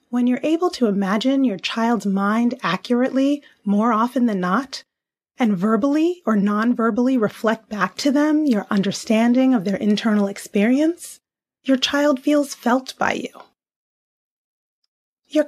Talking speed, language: 130 wpm, English